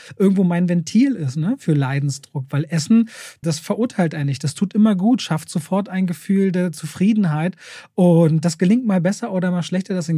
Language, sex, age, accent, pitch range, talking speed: German, male, 30-49, German, 150-180 Hz, 195 wpm